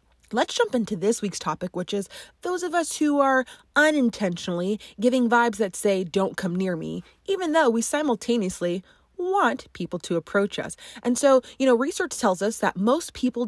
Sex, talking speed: female, 185 wpm